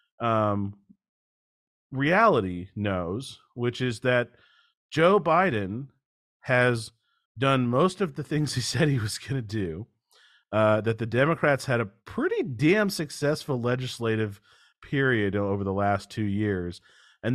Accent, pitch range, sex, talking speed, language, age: American, 100-150 Hz, male, 130 wpm, English, 40-59